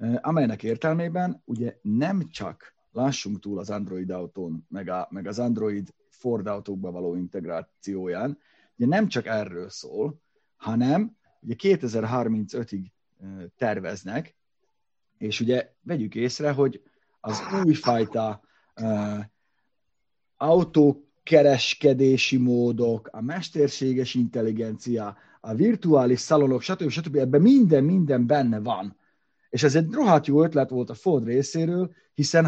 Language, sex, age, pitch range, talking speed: Hungarian, male, 30-49, 110-150 Hz, 115 wpm